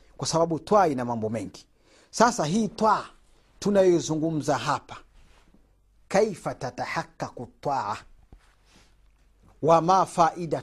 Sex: male